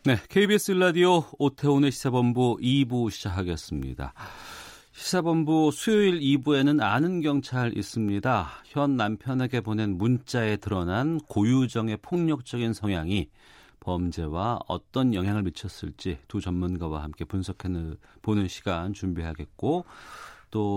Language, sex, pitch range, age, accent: Korean, male, 95-140 Hz, 40-59, native